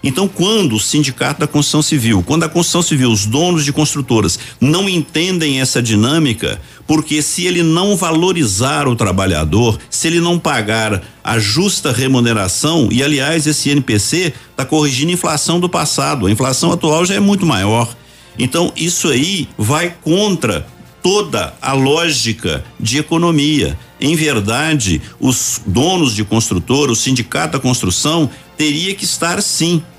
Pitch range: 120-170 Hz